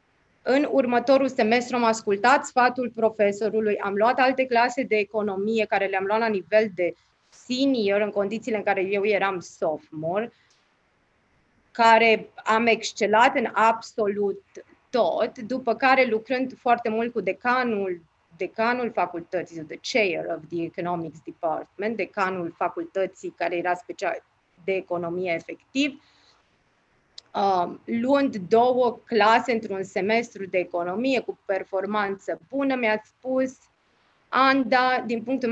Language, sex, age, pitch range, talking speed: Romanian, female, 30-49, 190-235 Hz, 120 wpm